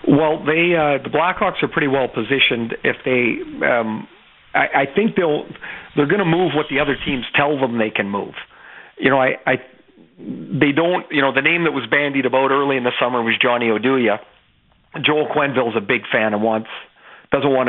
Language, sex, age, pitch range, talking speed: English, male, 50-69, 120-145 Hz, 200 wpm